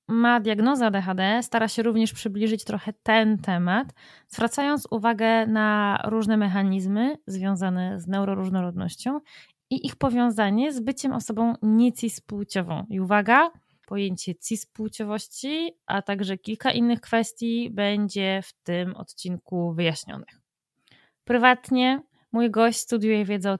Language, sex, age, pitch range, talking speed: Polish, female, 20-39, 190-235 Hz, 115 wpm